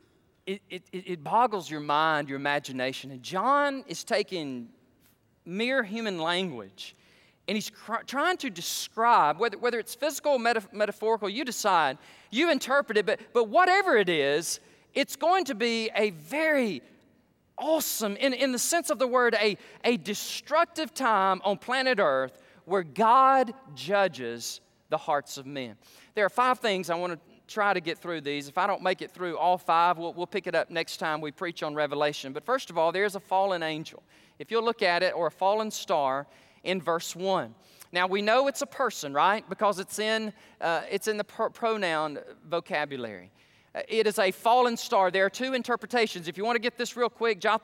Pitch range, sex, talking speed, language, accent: 170-240 Hz, male, 190 wpm, English, American